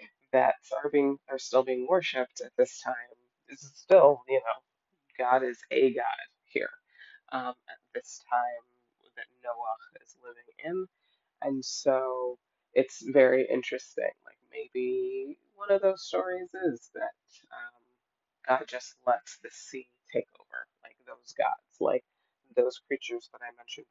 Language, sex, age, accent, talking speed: English, female, 20-39, American, 145 wpm